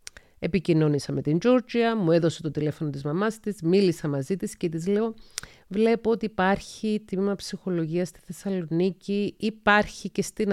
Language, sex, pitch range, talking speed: Greek, female, 150-195 Hz, 155 wpm